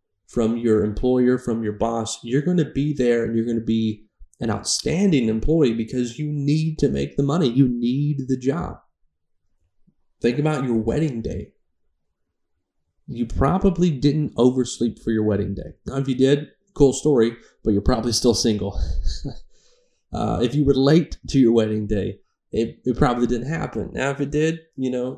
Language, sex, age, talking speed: English, male, 30-49, 175 wpm